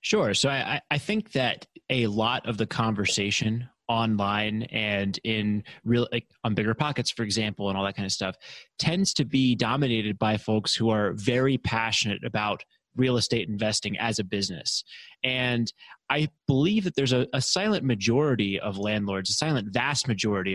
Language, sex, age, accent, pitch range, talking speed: English, male, 20-39, American, 105-125 Hz, 175 wpm